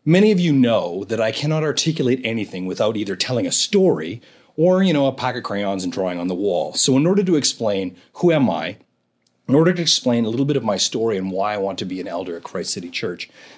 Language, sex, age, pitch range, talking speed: English, male, 30-49, 100-150 Hz, 250 wpm